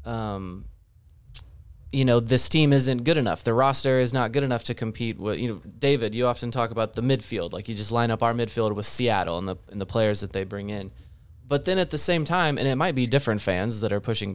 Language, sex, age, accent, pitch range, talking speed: English, male, 20-39, American, 105-140 Hz, 245 wpm